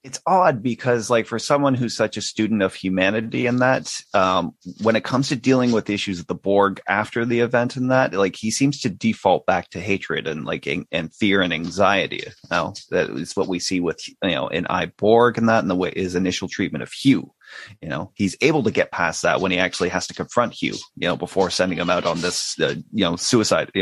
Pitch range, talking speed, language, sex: 95-115 Hz, 240 wpm, English, male